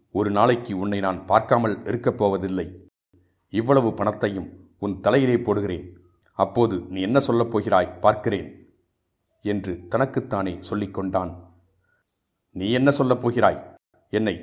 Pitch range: 95-115 Hz